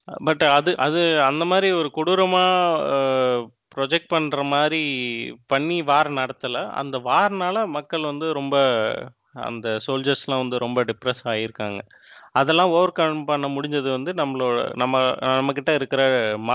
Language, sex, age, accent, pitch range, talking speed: Tamil, male, 30-49, native, 125-155 Hz, 130 wpm